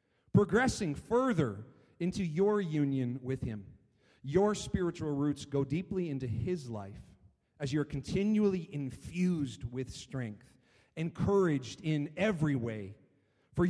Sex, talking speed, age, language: male, 115 wpm, 40-59, English